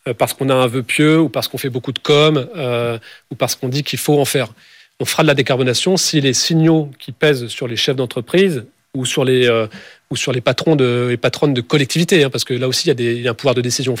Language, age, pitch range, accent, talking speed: French, 40-59, 125-155 Hz, French, 275 wpm